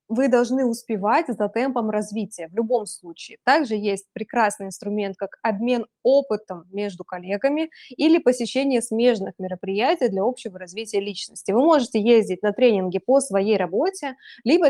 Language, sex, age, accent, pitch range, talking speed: Russian, female, 20-39, native, 205-260 Hz, 145 wpm